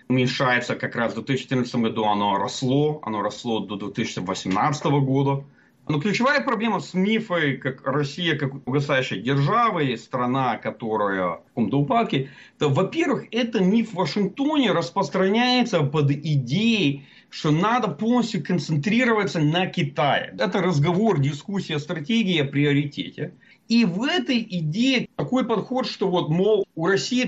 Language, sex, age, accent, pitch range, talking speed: Russian, male, 40-59, native, 140-220 Hz, 130 wpm